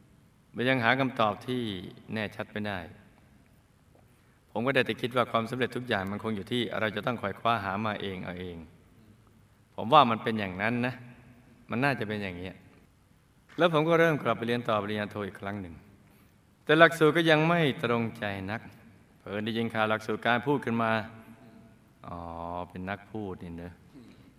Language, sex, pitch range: Thai, male, 110-140 Hz